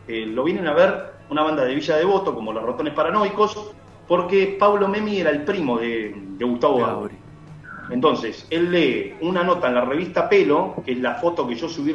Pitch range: 130-205 Hz